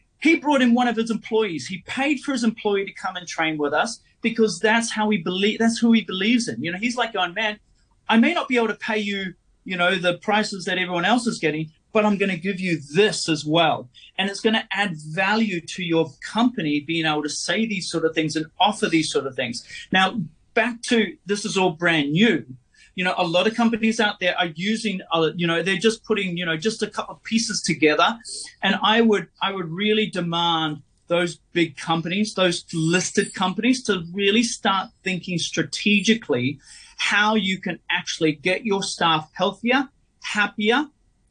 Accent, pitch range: Australian, 170-220 Hz